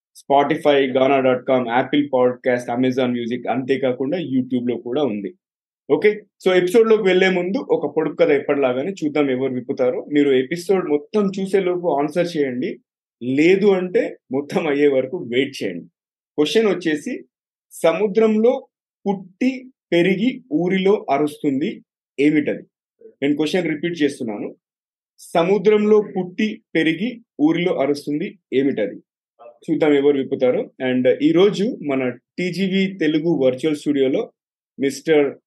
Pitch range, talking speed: 135-185 Hz, 115 wpm